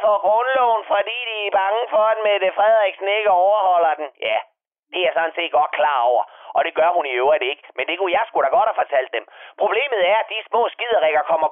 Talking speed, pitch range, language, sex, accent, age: 240 wpm, 175-275 Hz, Danish, male, native, 30-49